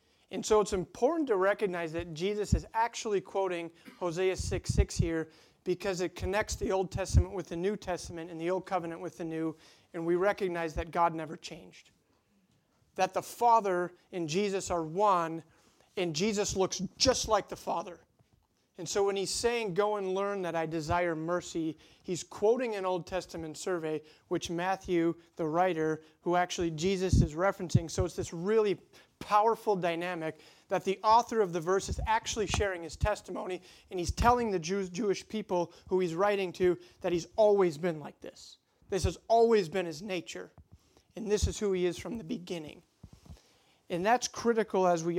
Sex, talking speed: male, 175 wpm